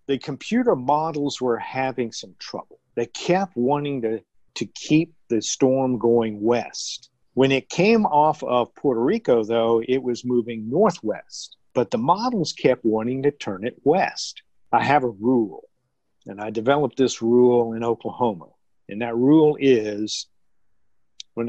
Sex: male